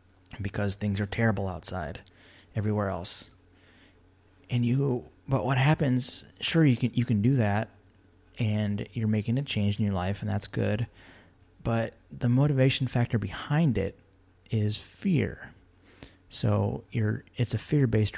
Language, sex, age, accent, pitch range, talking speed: English, male, 30-49, American, 95-115 Hz, 140 wpm